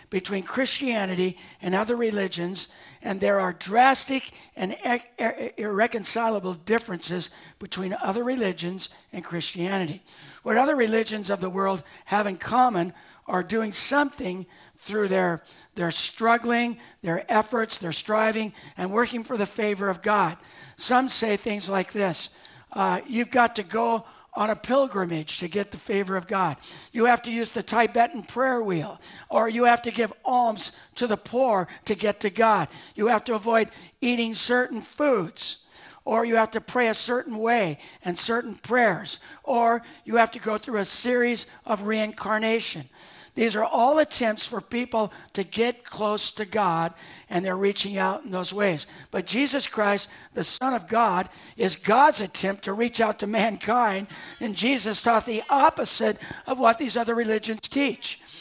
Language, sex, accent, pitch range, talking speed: English, male, American, 195-235 Hz, 160 wpm